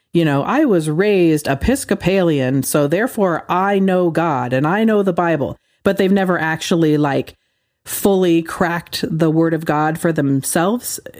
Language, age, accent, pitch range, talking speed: English, 40-59, American, 160-200 Hz, 155 wpm